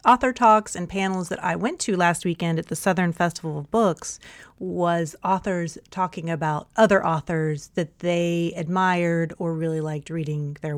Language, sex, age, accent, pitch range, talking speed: English, female, 30-49, American, 165-205 Hz, 165 wpm